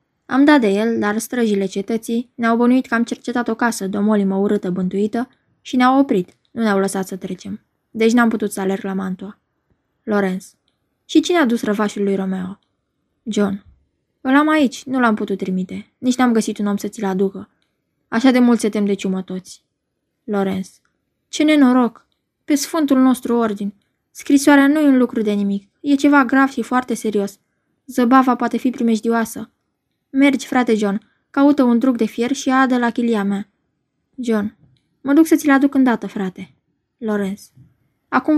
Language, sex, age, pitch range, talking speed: Romanian, female, 20-39, 205-255 Hz, 175 wpm